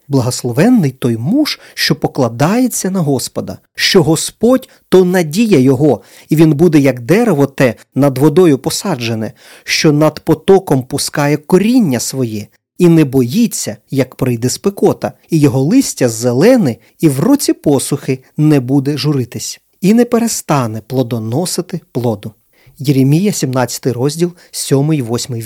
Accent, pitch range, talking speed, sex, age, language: native, 130-190 Hz, 125 wpm, male, 40-59, Ukrainian